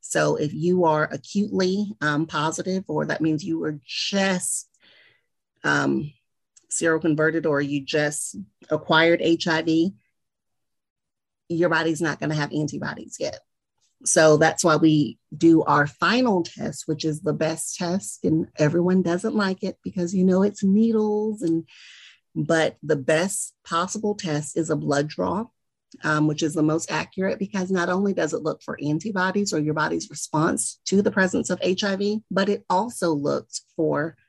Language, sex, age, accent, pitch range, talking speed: English, female, 40-59, American, 150-185 Hz, 155 wpm